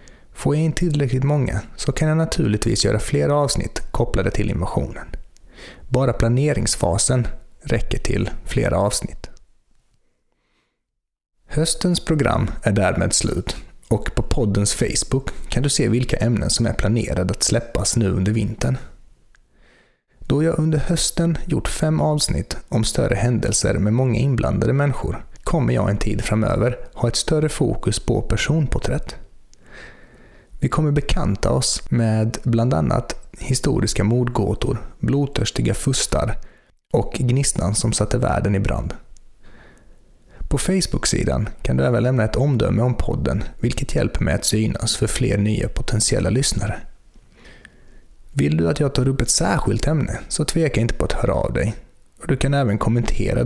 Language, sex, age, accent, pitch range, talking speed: Swedish, male, 30-49, native, 110-140 Hz, 145 wpm